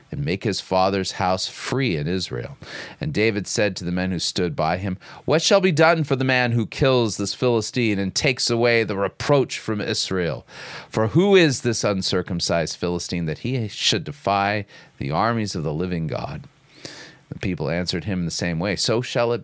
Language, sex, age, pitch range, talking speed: English, male, 40-59, 95-130 Hz, 190 wpm